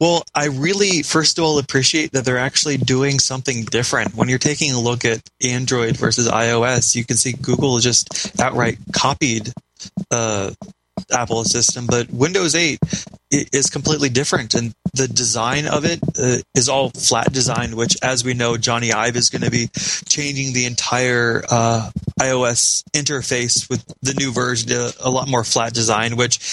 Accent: American